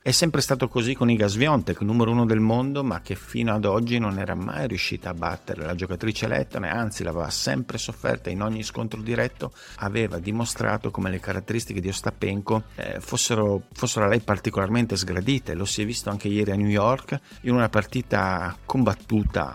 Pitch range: 95-115 Hz